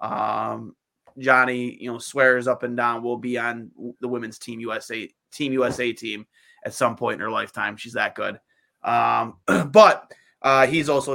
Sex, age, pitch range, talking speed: male, 20-39, 125-135 Hz, 170 wpm